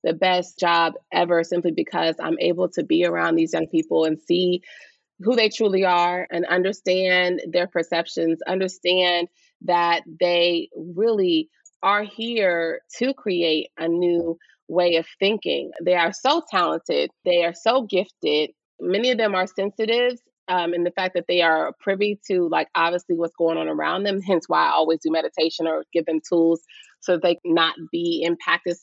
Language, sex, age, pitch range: English, female, 30-49, 165-205 Hz